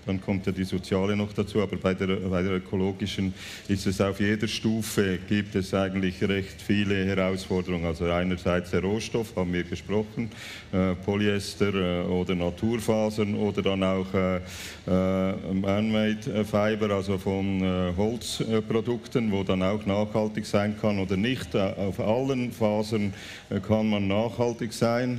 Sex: male